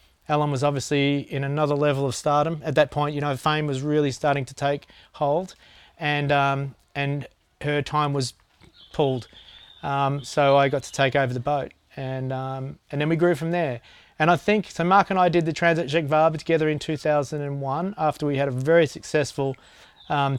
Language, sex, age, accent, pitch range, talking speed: English, male, 30-49, Australian, 130-150 Hz, 195 wpm